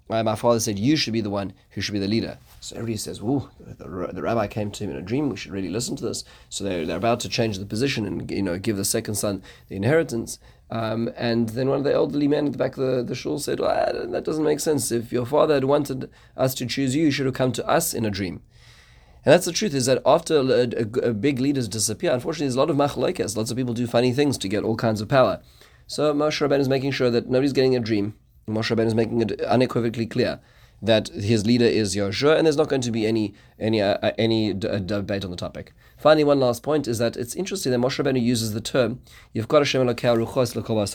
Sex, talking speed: male, 260 wpm